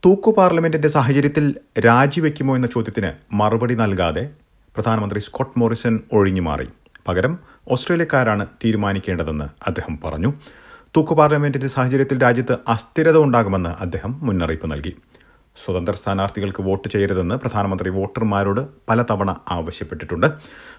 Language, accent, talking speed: Malayalam, native, 90 wpm